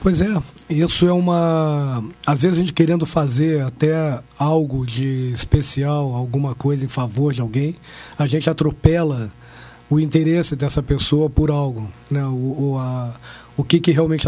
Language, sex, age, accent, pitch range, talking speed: Portuguese, male, 40-59, Brazilian, 140-170 Hz, 160 wpm